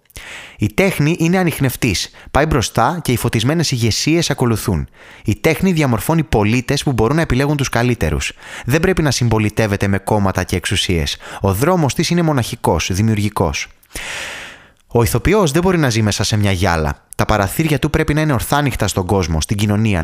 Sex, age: male, 20-39